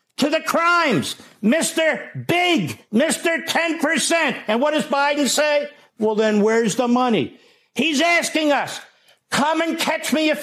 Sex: male